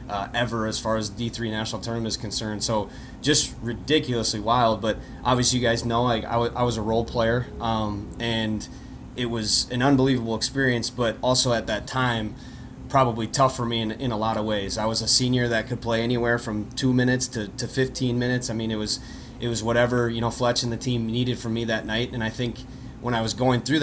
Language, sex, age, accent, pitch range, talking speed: English, male, 20-39, American, 115-125 Hz, 225 wpm